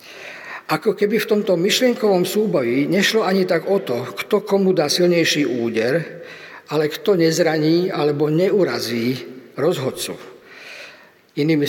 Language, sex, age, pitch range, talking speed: Slovak, male, 50-69, 150-190 Hz, 120 wpm